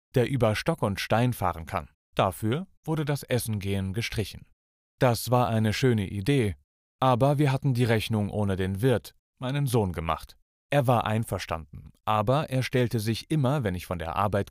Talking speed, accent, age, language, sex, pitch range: 175 wpm, German, 30-49, German, male, 100-130 Hz